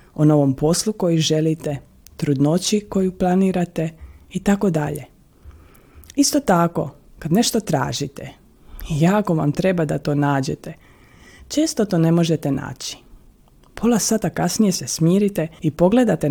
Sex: female